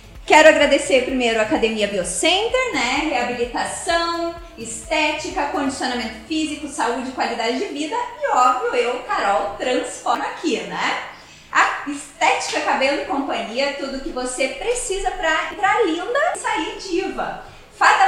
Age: 20-39